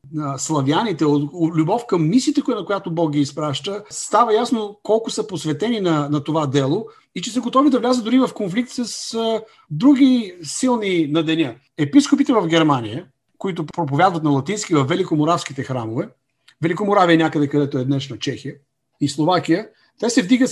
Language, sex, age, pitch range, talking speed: Bulgarian, male, 50-69, 155-235 Hz, 160 wpm